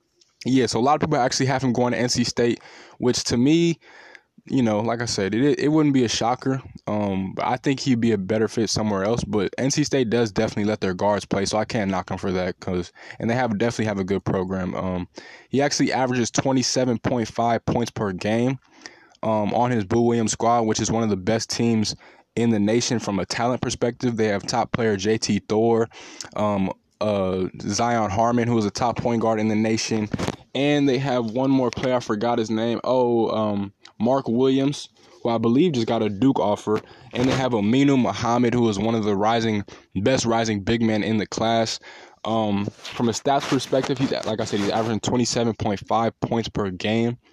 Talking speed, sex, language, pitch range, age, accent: 210 wpm, male, English, 105-125 Hz, 10-29, American